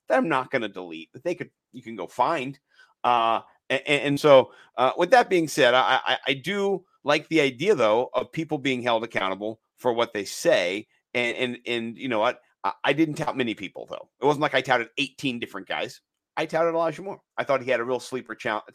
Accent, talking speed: American, 225 wpm